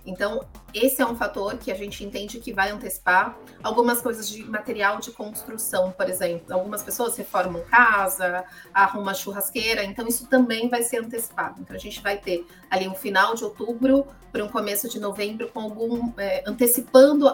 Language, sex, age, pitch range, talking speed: Portuguese, female, 30-49, 190-235 Hz, 175 wpm